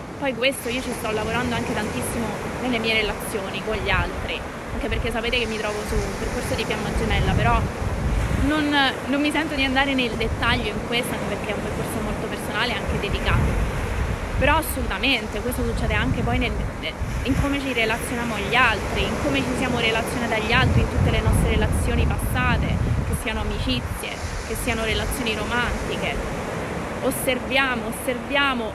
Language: Italian